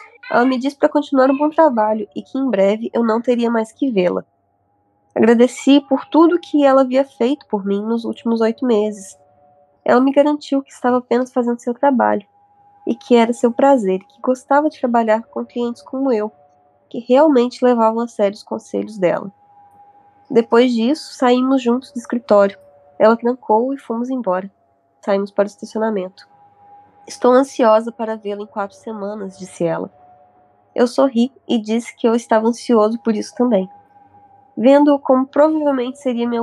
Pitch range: 200-265 Hz